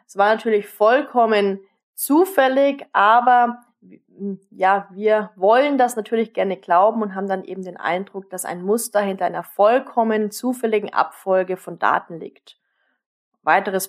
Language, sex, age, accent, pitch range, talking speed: German, female, 20-39, German, 195-245 Hz, 135 wpm